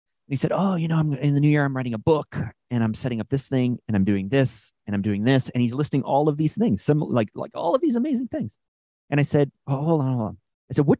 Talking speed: 285 wpm